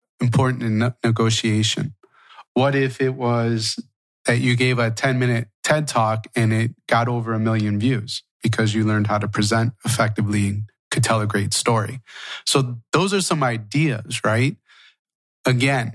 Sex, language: male, English